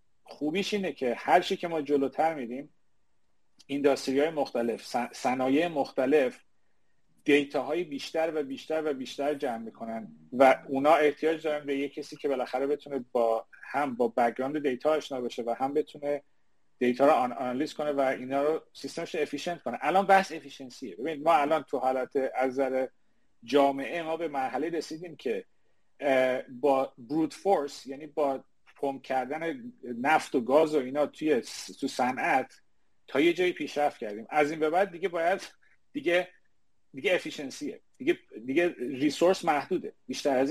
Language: Persian